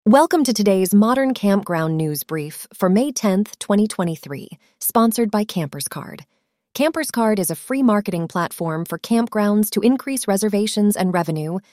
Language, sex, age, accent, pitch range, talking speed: English, female, 30-49, American, 185-240 Hz, 140 wpm